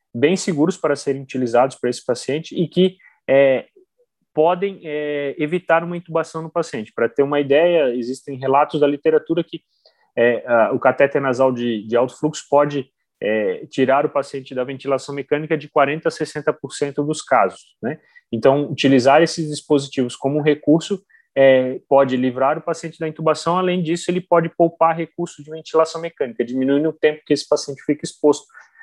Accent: Brazilian